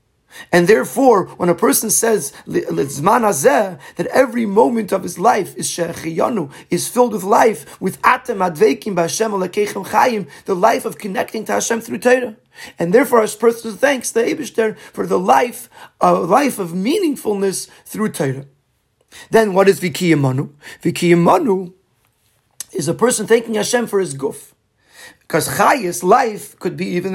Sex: male